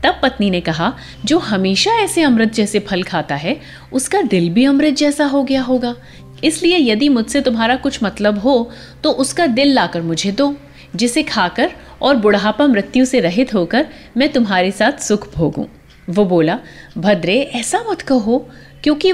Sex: female